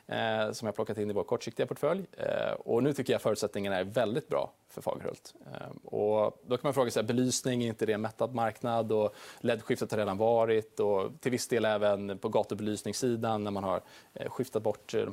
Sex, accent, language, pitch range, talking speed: male, Norwegian, Swedish, 110-135 Hz, 200 wpm